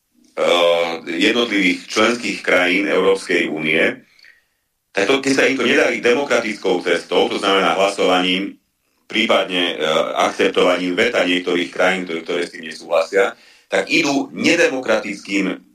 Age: 40-59